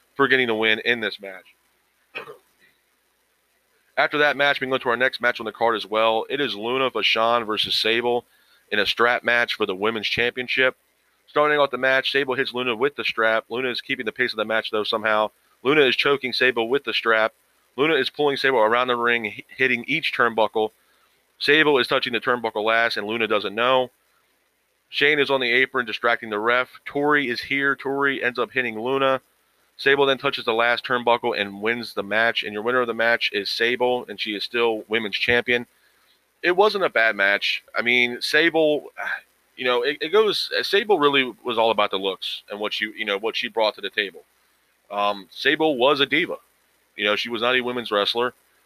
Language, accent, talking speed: English, American, 205 wpm